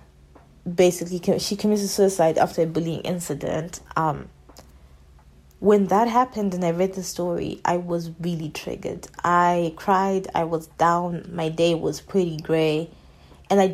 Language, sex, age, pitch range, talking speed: English, female, 20-39, 155-195 Hz, 145 wpm